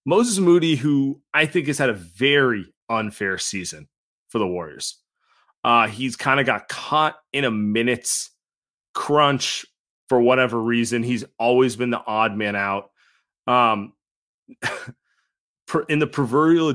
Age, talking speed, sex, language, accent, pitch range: 30-49, 135 wpm, male, English, American, 105-140 Hz